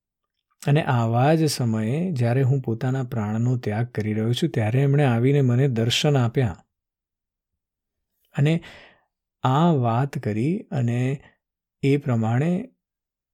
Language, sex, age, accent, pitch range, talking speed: Gujarati, male, 50-69, native, 115-145 Hz, 65 wpm